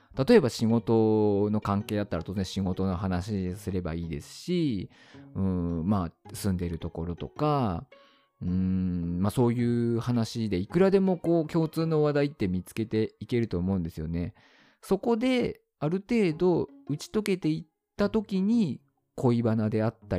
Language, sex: Japanese, male